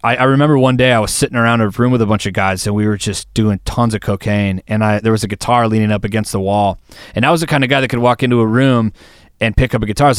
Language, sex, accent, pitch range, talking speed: English, male, American, 95-120 Hz, 310 wpm